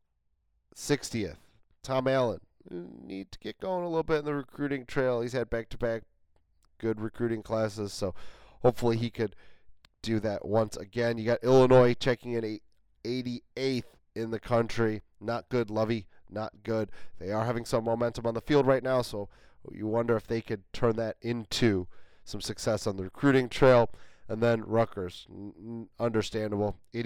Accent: American